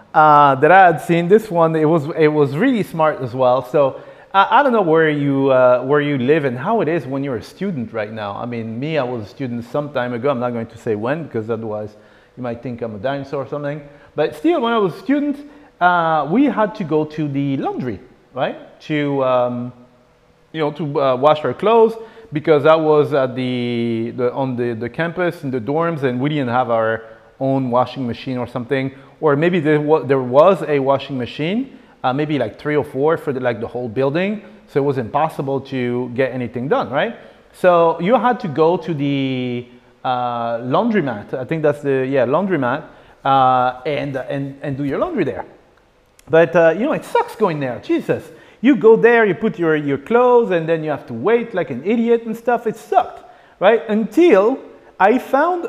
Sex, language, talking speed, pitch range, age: male, English, 210 wpm, 125-180 Hz, 30-49